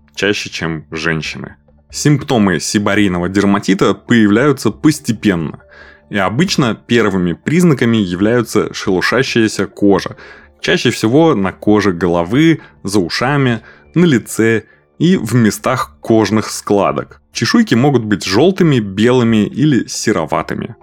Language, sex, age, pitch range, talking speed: Russian, male, 20-39, 95-125 Hz, 105 wpm